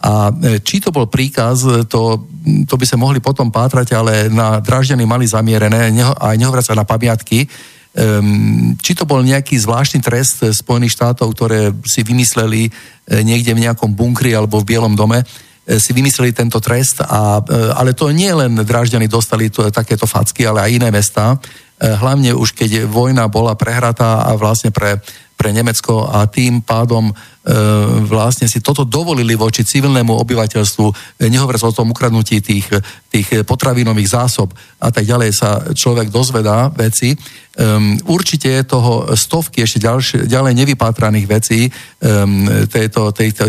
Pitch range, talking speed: 110-125 Hz, 145 wpm